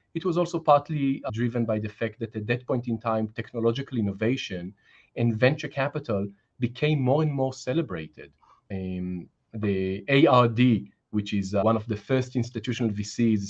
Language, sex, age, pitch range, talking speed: English, male, 30-49, 105-145 Hz, 165 wpm